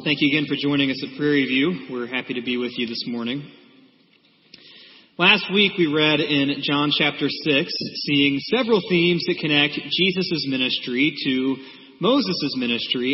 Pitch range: 140-180 Hz